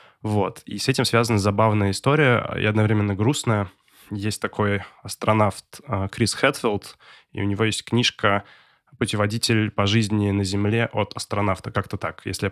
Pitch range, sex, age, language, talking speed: 100-115 Hz, male, 20-39, Russian, 150 wpm